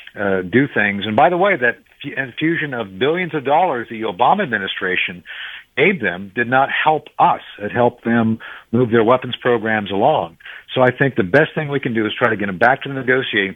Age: 50-69